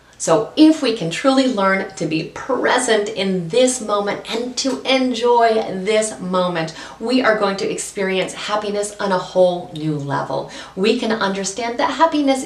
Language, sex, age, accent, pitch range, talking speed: English, female, 40-59, American, 160-220 Hz, 160 wpm